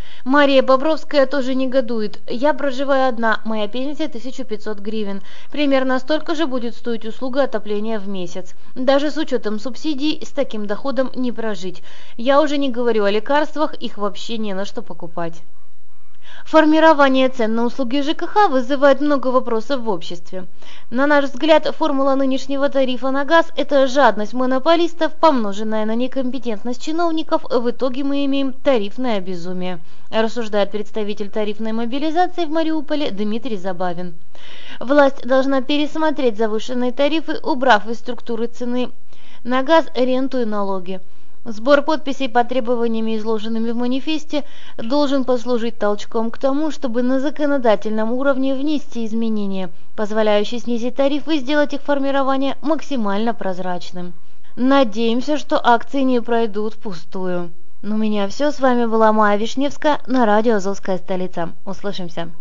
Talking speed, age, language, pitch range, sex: 135 wpm, 20-39, Russian, 215-280 Hz, female